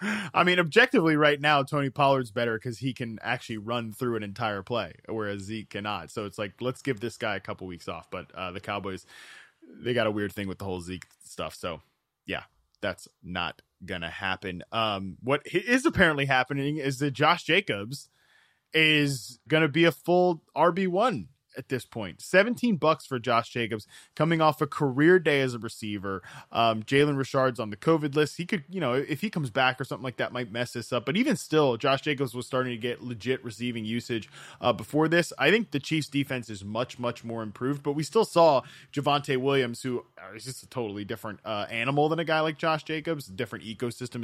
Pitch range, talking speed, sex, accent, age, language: 110-150 Hz, 210 wpm, male, American, 20-39, English